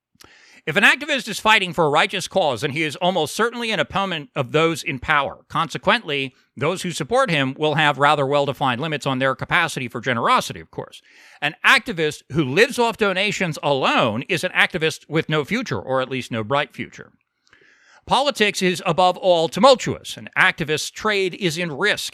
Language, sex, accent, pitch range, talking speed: English, male, American, 150-215 Hz, 180 wpm